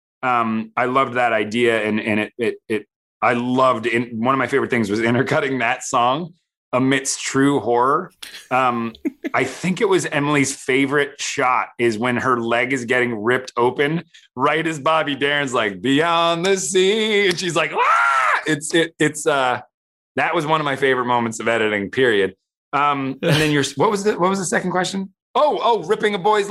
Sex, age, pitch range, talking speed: male, 30-49, 115-165 Hz, 190 wpm